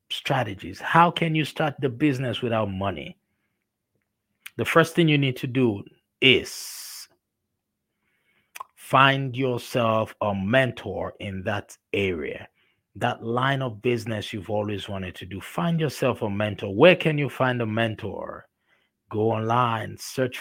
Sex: male